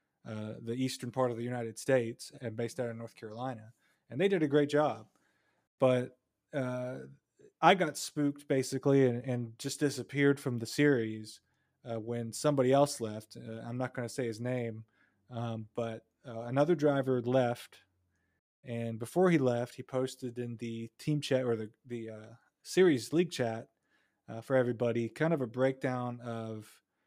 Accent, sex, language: American, male, English